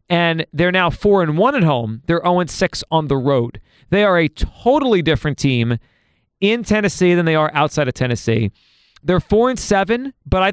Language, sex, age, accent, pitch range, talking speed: English, male, 40-59, American, 150-190 Hz, 175 wpm